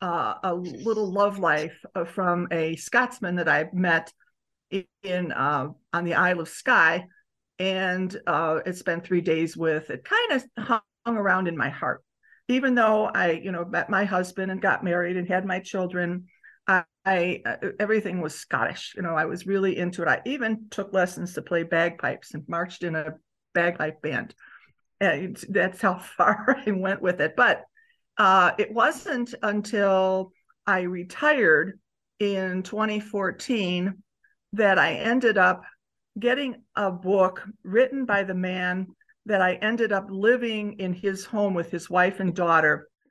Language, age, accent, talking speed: English, 50-69, American, 160 wpm